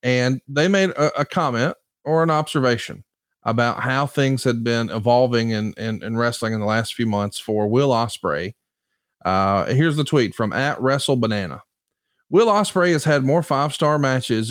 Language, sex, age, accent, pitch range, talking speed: English, male, 40-59, American, 120-155 Hz, 175 wpm